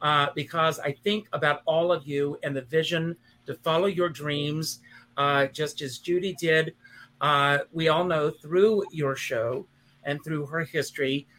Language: English